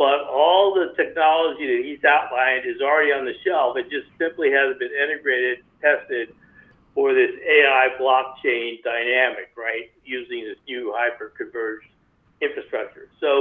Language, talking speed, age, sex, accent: English, 140 wpm, 60-79, male, American